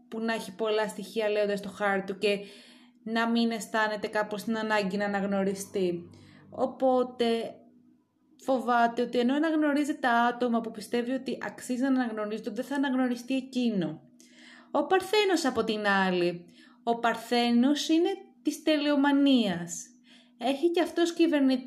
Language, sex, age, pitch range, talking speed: Greek, female, 20-39, 210-280 Hz, 135 wpm